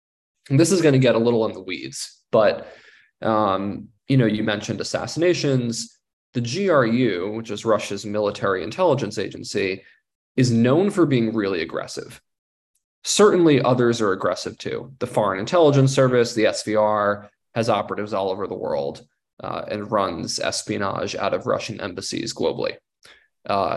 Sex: male